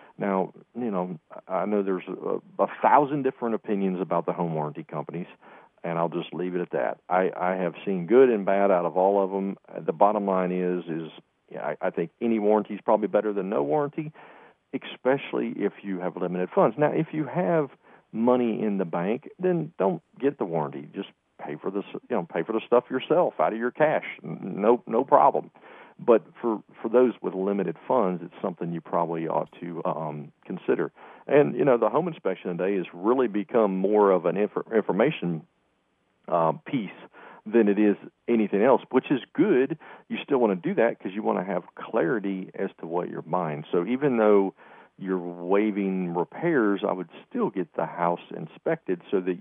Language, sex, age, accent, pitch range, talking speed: English, male, 40-59, American, 85-105 Hz, 195 wpm